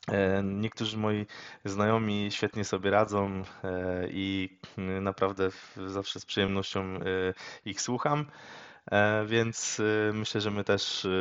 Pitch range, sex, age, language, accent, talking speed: 95-115 Hz, male, 20-39, Polish, native, 95 wpm